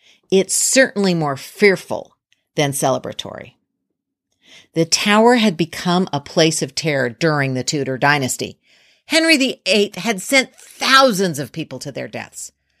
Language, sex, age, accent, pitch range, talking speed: English, female, 50-69, American, 145-205 Hz, 130 wpm